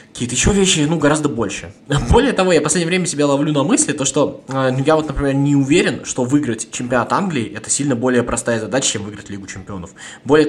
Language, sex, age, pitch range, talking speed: Russian, male, 20-39, 110-140 Hz, 215 wpm